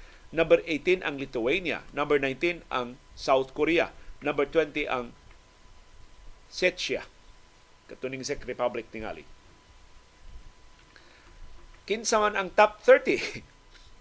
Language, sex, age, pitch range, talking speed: Filipino, male, 50-69, 130-190 Hz, 85 wpm